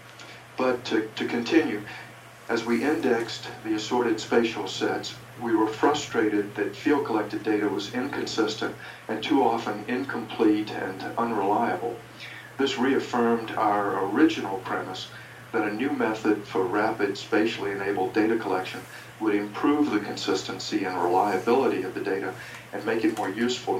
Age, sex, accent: 50-69, male, American